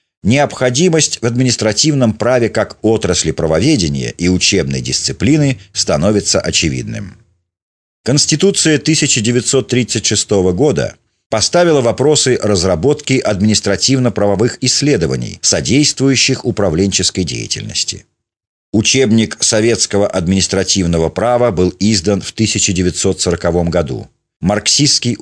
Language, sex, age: Russian, male, 40-59